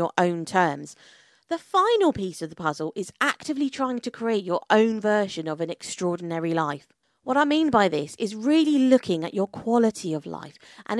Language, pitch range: English, 170-250 Hz